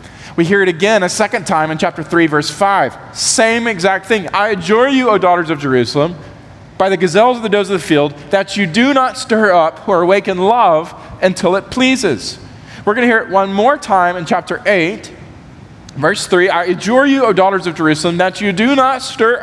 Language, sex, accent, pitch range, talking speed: English, male, American, 170-255 Hz, 210 wpm